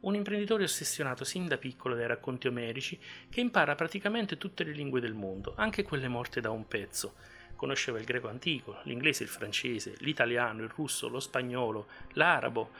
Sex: male